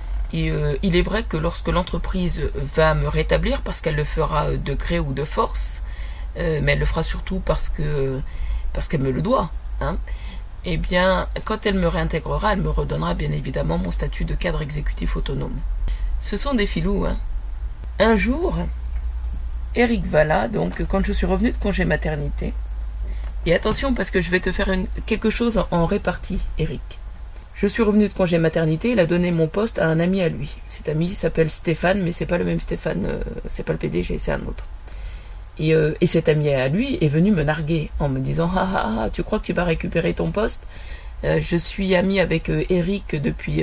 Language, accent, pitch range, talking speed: French, French, 135-185 Hz, 205 wpm